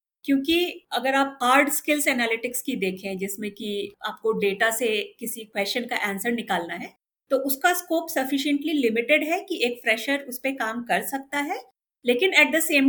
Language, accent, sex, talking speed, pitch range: Hindi, native, female, 175 wpm, 220-290 Hz